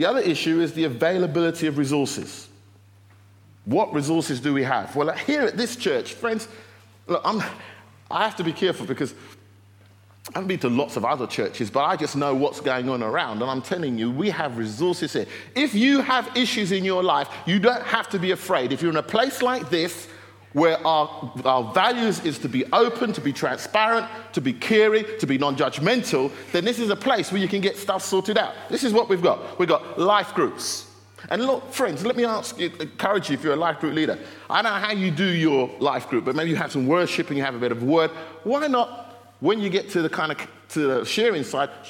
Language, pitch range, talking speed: English, 125-190 Hz, 225 wpm